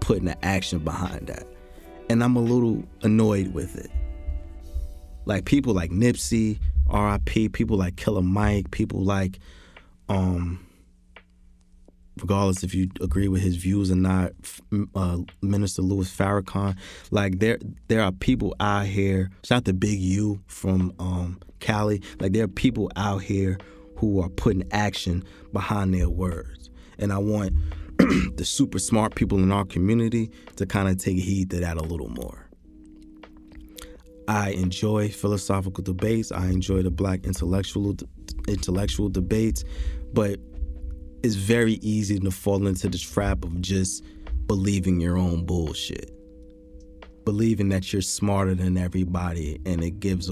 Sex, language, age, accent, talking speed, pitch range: male, English, 20-39, American, 145 wpm, 85-100 Hz